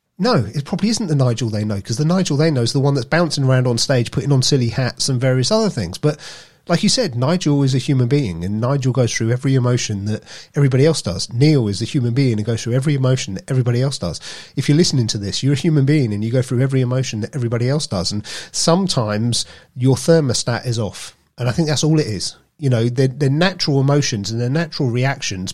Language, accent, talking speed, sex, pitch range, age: English, British, 245 wpm, male, 110-140 Hz, 40-59